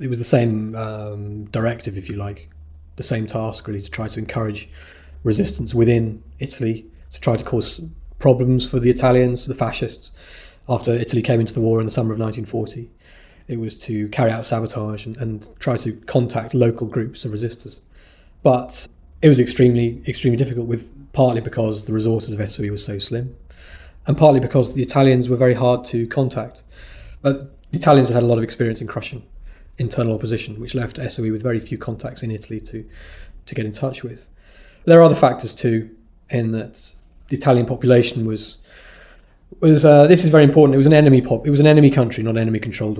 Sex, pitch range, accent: male, 110-125 Hz, British